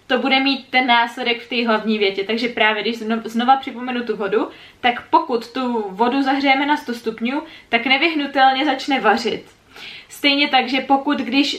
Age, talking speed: 20-39, 170 wpm